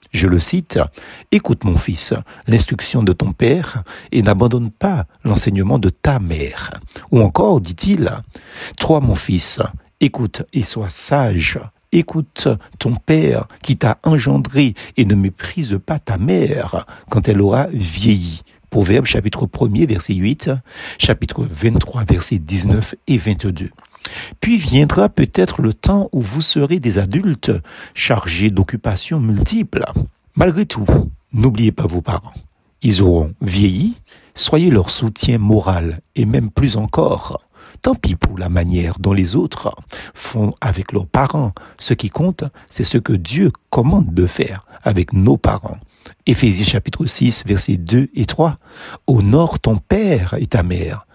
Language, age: French, 60-79